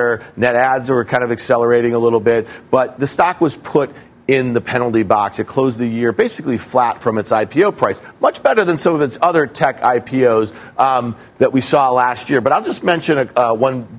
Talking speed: 210 wpm